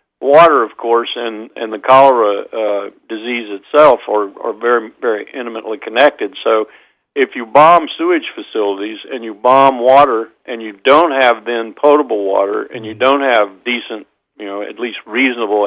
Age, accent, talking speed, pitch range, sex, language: 50-69, American, 165 wpm, 115-140 Hz, male, English